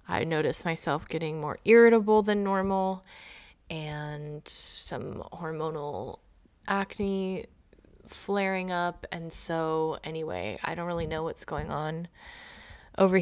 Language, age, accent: English, 20-39, American